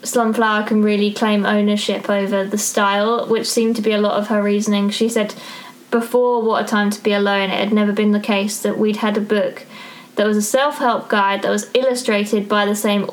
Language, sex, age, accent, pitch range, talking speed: English, female, 20-39, British, 205-225 Hz, 220 wpm